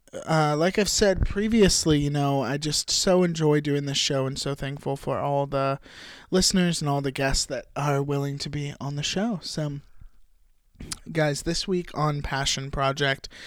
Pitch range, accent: 145-180 Hz, American